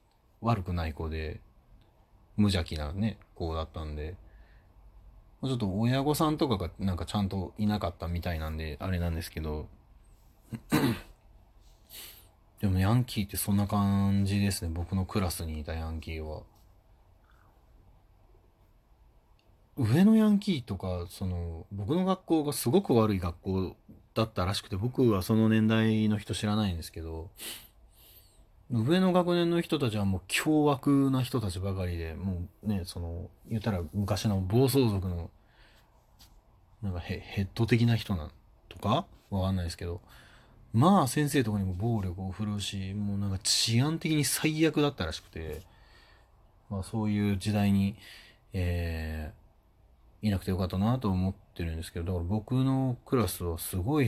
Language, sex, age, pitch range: Japanese, male, 30-49, 90-110 Hz